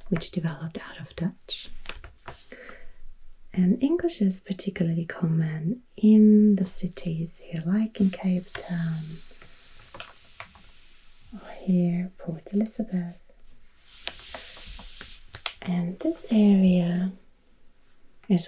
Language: English